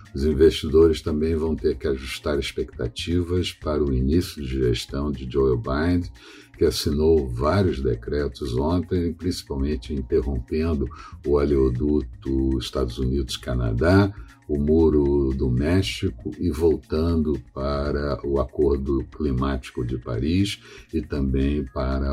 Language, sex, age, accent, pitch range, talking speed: Portuguese, male, 60-79, Brazilian, 65-85 Hz, 115 wpm